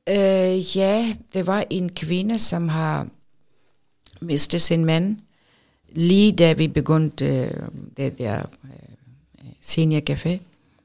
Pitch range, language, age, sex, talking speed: 145-170 Hz, Danish, 50-69, female, 115 wpm